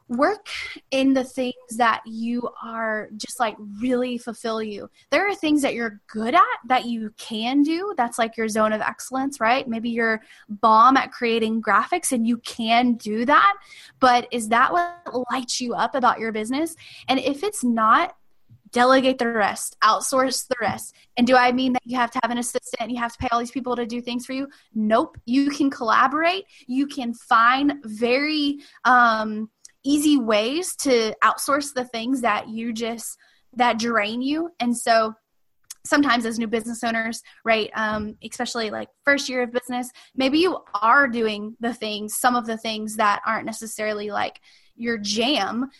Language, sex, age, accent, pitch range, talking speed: English, female, 10-29, American, 225-265 Hz, 180 wpm